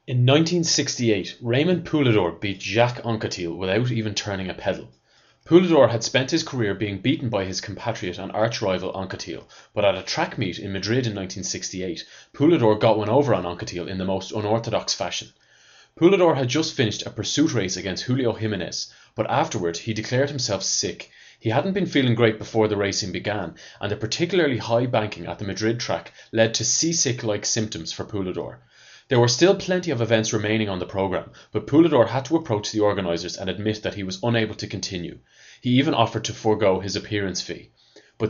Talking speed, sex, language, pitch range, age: 185 wpm, male, English, 100-125 Hz, 30-49